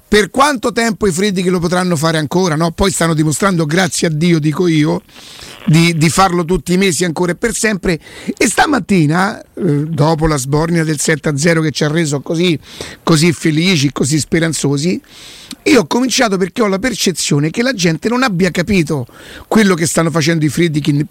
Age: 50-69